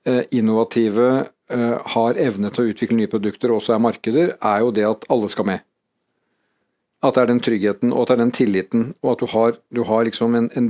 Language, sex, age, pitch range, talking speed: English, male, 50-69, 115-135 Hz, 225 wpm